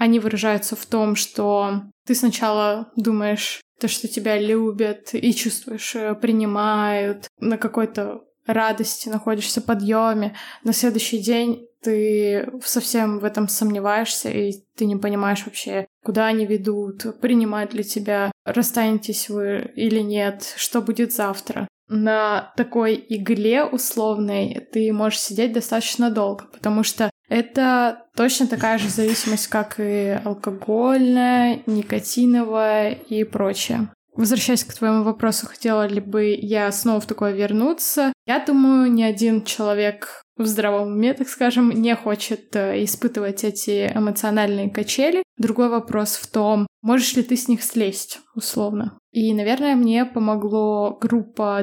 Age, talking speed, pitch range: 20-39, 130 wpm, 210-235 Hz